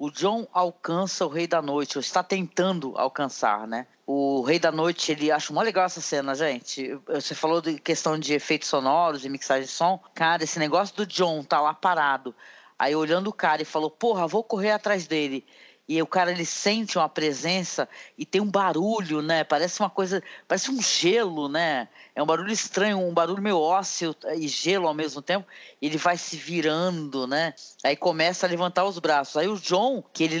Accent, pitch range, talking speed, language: Brazilian, 155-210 Hz, 200 wpm, Portuguese